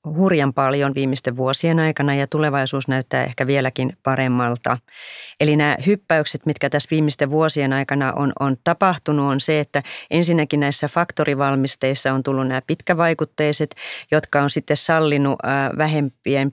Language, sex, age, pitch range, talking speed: Finnish, female, 30-49, 140-155 Hz, 135 wpm